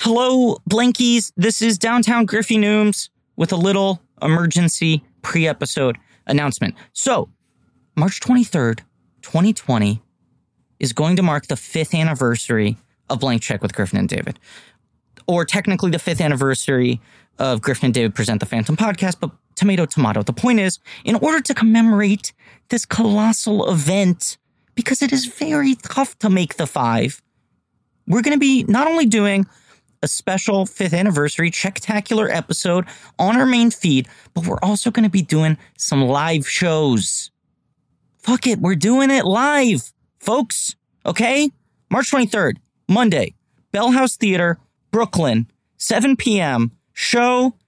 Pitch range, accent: 140-220 Hz, American